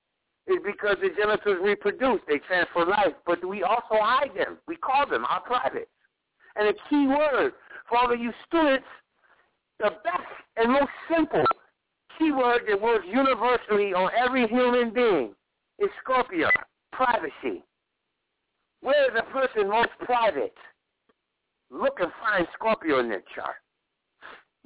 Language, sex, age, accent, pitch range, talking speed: English, male, 60-79, American, 205-290 Hz, 140 wpm